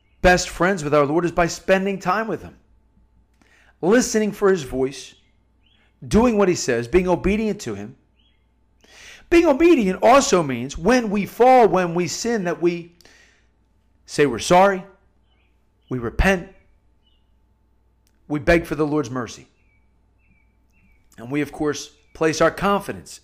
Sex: male